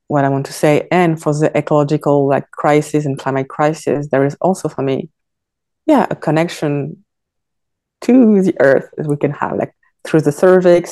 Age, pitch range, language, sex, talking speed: 20-39, 140-170 Hz, English, female, 180 wpm